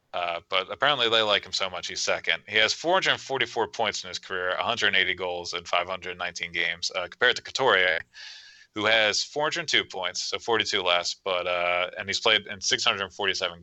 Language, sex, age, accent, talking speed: English, male, 20-39, American, 170 wpm